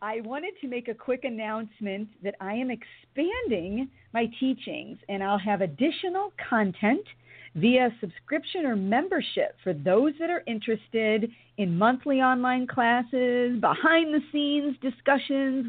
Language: English